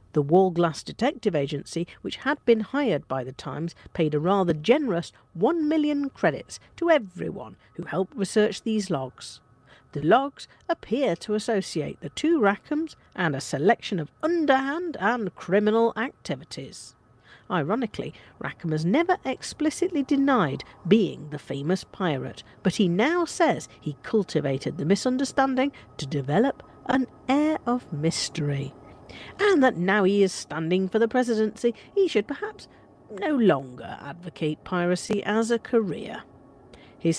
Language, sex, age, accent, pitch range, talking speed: English, female, 50-69, British, 160-255 Hz, 135 wpm